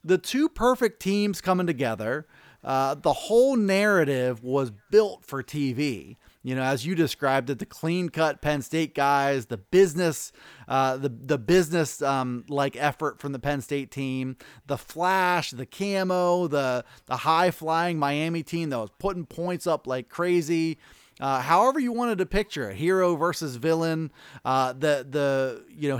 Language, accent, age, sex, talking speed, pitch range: English, American, 30-49, male, 165 wpm, 135-175 Hz